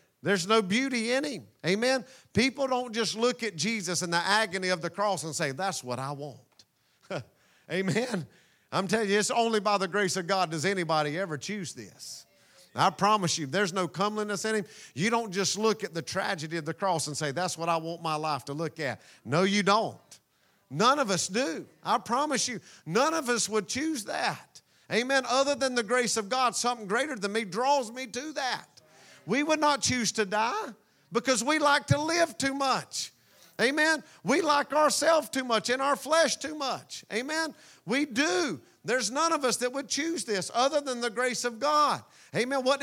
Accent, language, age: American, English, 50-69